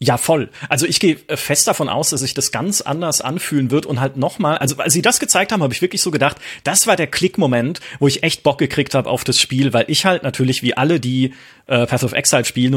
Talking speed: 260 wpm